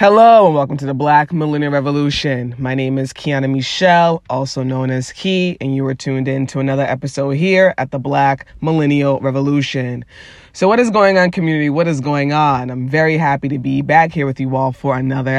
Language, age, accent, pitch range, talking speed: English, 20-39, American, 135-155 Hz, 205 wpm